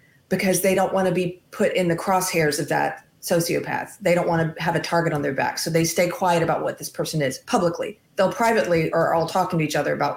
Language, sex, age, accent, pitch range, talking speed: English, female, 30-49, American, 170-215 Hz, 235 wpm